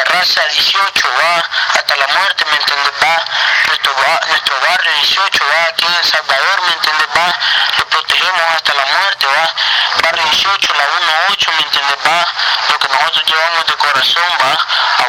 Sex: male